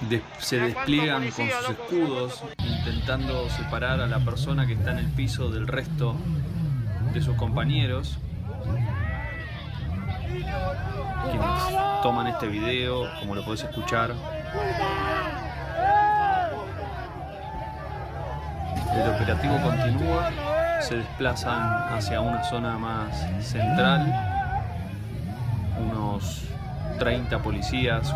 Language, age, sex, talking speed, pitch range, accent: Spanish, 20-39, male, 85 wpm, 110-130 Hz, Argentinian